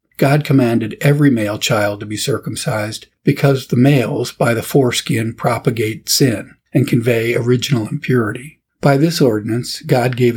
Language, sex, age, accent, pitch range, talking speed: English, male, 50-69, American, 115-140 Hz, 145 wpm